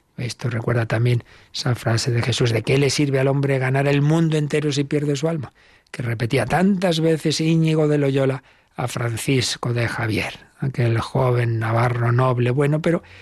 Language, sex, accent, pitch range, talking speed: Spanish, male, Spanish, 120-145 Hz, 175 wpm